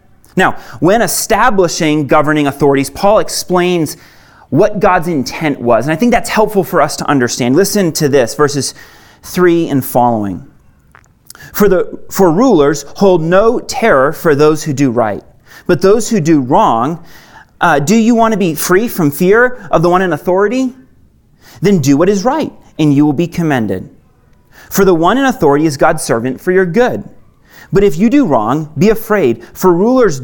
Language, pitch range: English, 145-205 Hz